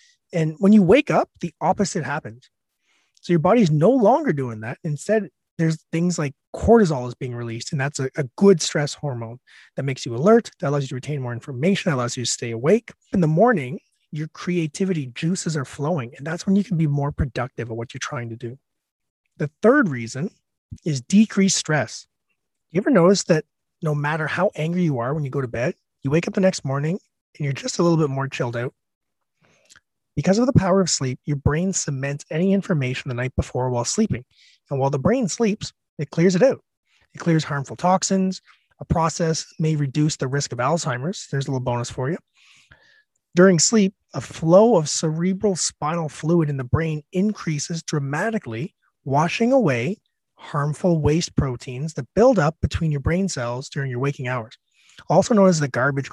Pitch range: 135-185 Hz